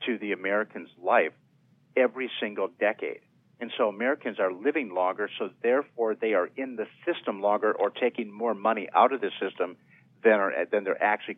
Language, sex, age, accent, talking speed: English, male, 50-69, American, 180 wpm